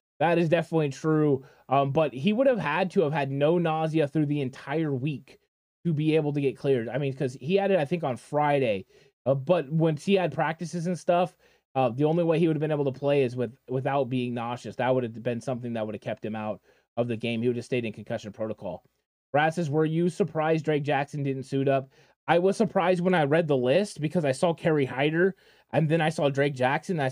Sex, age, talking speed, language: male, 20-39, 245 wpm, English